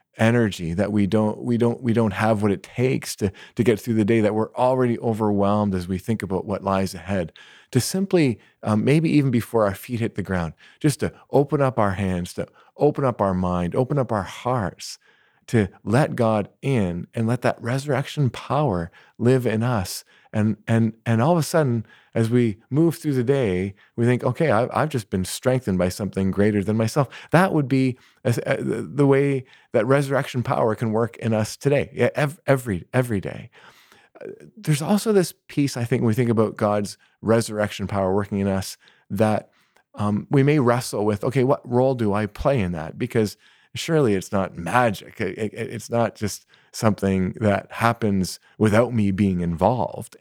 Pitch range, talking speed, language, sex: 100-130 Hz, 190 wpm, English, male